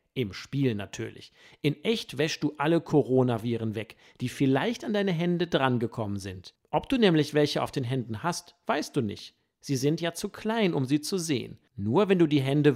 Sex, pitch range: male, 120-165 Hz